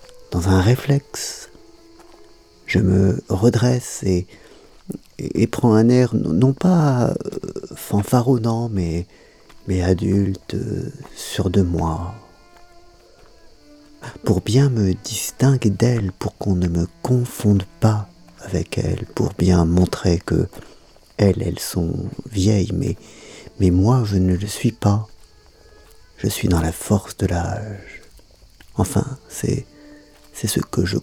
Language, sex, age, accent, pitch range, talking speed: French, male, 50-69, French, 95-120 Hz, 120 wpm